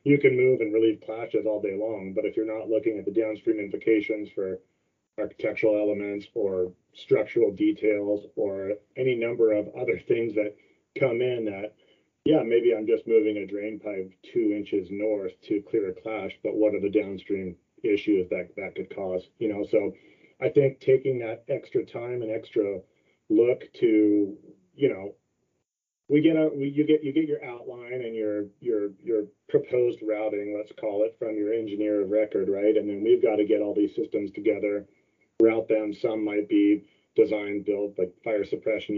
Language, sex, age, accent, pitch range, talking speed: English, male, 30-49, American, 105-140 Hz, 185 wpm